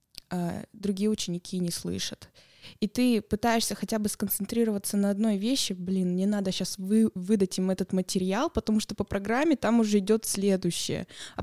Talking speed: 165 wpm